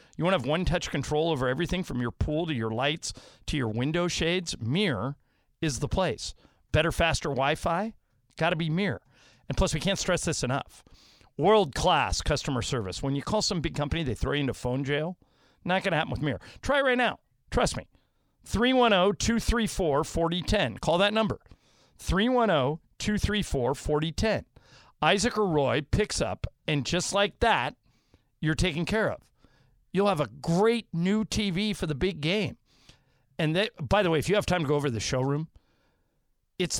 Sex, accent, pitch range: male, American, 130-185 Hz